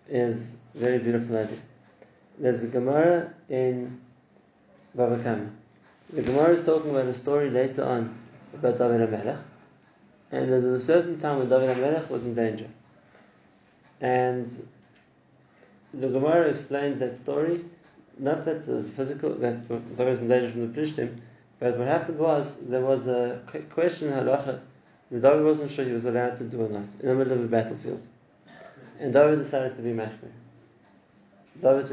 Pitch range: 120-145 Hz